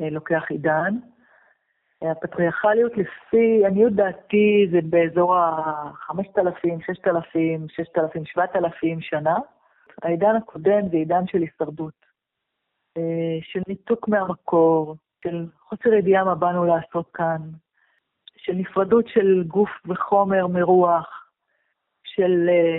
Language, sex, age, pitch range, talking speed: Hebrew, female, 40-59, 170-210 Hz, 95 wpm